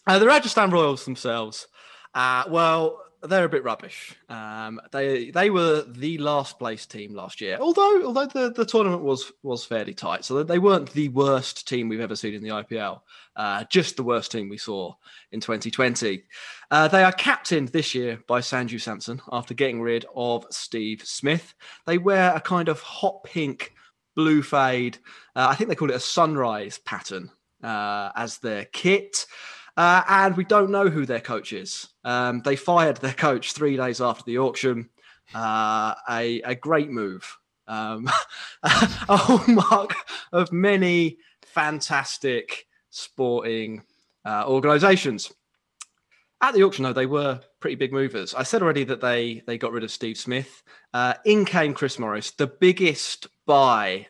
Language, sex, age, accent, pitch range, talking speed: English, male, 20-39, British, 115-175 Hz, 165 wpm